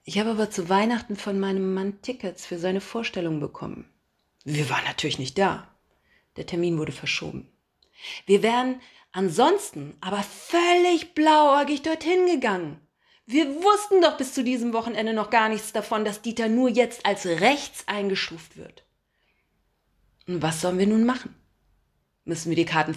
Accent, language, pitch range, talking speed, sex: German, German, 190-295 Hz, 155 wpm, female